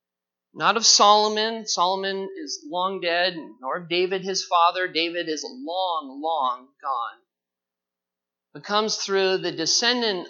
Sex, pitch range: male, 160-210 Hz